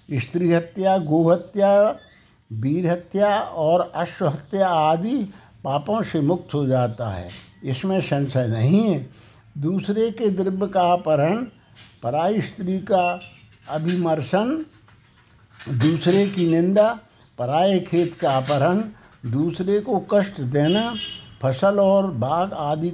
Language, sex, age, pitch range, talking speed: Hindi, male, 60-79, 140-190 Hz, 110 wpm